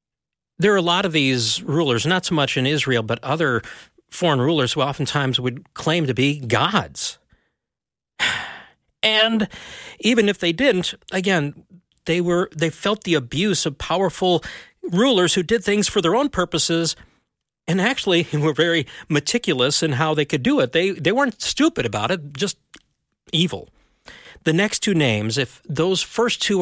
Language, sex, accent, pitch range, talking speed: English, male, American, 130-180 Hz, 160 wpm